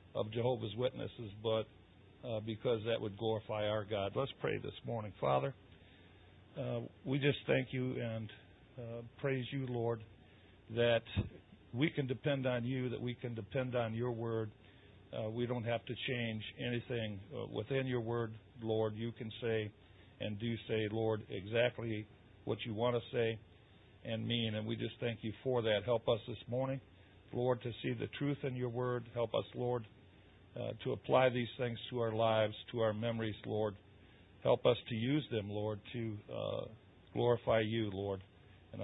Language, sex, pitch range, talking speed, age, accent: English, male, 105-125 Hz, 170 wpm, 50-69, American